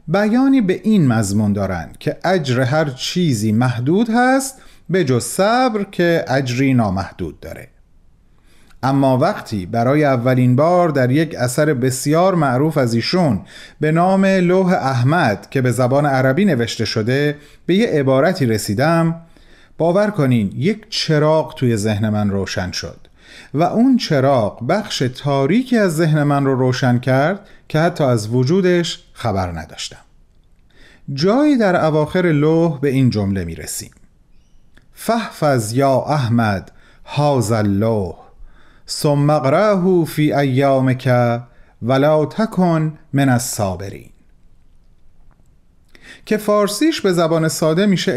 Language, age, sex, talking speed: Persian, 40-59, male, 120 wpm